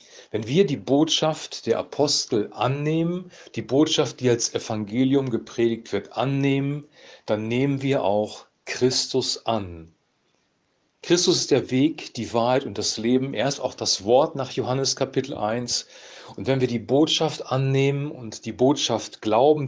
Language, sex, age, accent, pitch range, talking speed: German, male, 40-59, German, 115-150 Hz, 150 wpm